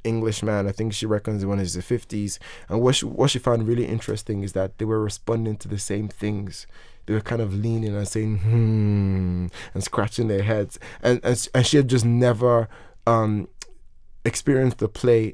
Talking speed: 200 wpm